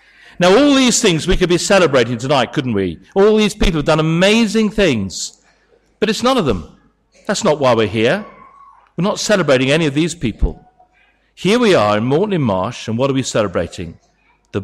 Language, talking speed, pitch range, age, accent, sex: English, 195 wpm, 120-180 Hz, 50-69, British, male